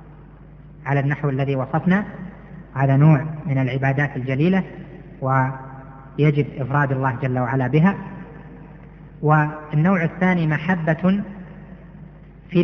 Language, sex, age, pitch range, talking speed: Arabic, female, 30-49, 140-170 Hz, 90 wpm